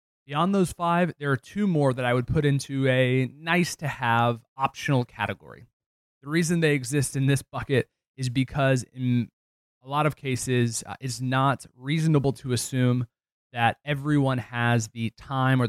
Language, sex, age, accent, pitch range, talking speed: English, male, 20-39, American, 115-140 Hz, 170 wpm